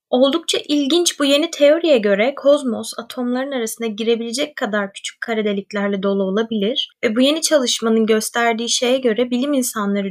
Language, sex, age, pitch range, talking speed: Turkish, female, 20-39, 215-285 Hz, 150 wpm